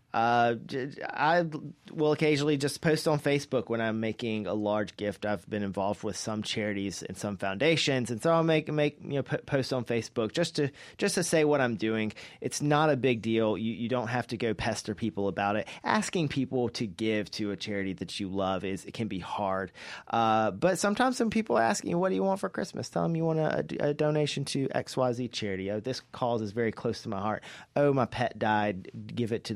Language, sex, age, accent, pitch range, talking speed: English, male, 30-49, American, 105-145 Hz, 225 wpm